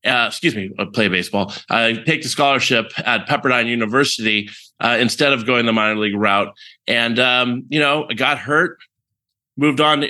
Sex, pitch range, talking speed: male, 115-140 Hz, 180 wpm